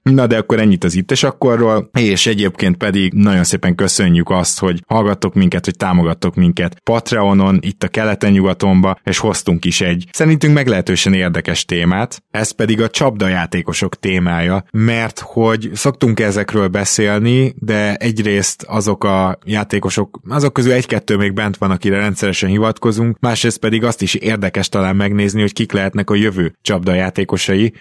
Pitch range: 95-110 Hz